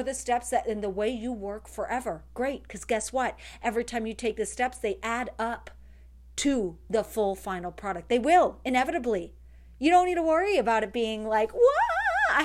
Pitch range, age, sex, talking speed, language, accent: 205-280 Hz, 40-59, female, 195 wpm, English, American